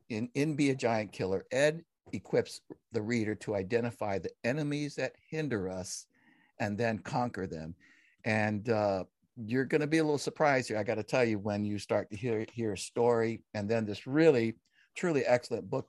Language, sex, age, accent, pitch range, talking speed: English, male, 60-79, American, 100-125 Hz, 195 wpm